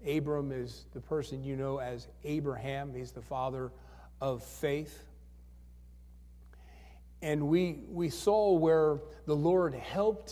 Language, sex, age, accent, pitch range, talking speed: English, male, 50-69, American, 120-155 Hz, 120 wpm